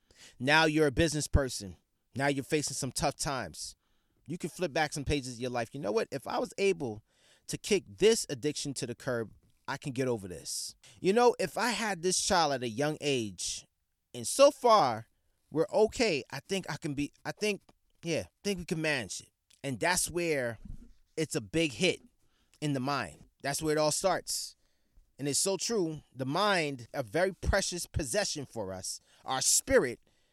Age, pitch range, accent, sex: 30-49, 130-185 Hz, American, male